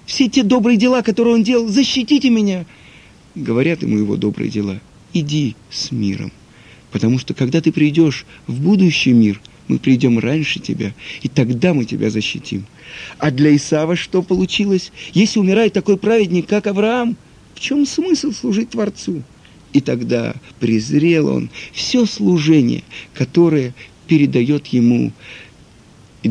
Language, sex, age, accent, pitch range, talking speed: Russian, male, 50-69, native, 115-175 Hz, 135 wpm